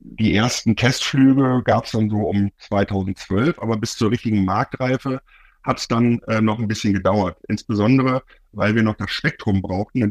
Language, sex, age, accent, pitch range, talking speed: German, male, 50-69, German, 105-135 Hz, 180 wpm